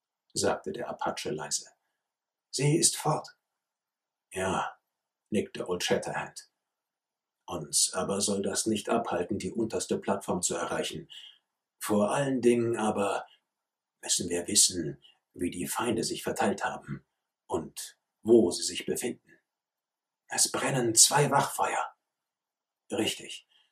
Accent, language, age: German, German, 50-69